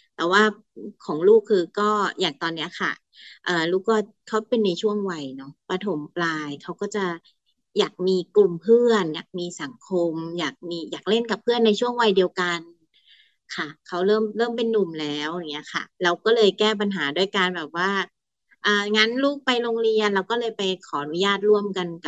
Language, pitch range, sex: Thai, 170-210 Hz, female